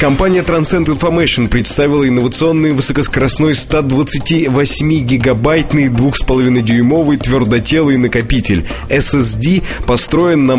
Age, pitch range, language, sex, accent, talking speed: 20-39, 115-140 Hz, Russian, male, native, 75 wpm